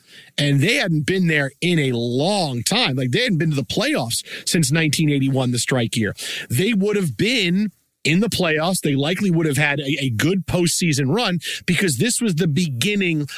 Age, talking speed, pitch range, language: 40-59, 195 wpm, 140-175 Hz, English